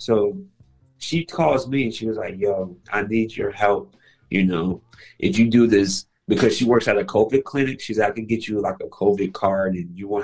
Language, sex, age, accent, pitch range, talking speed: English, male, 30-49, American, 100-135 Hz, 230 wpm